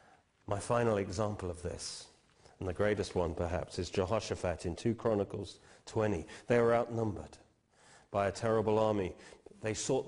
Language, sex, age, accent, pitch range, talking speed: English, male, 40-59, British, 100-125 Hz, 150 wpm